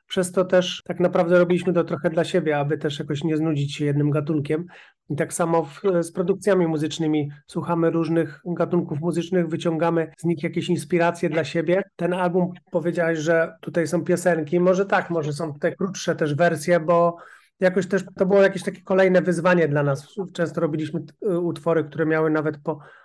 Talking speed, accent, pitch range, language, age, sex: 185 wpm, native, 155-175 Hz, Polish, 30-49, male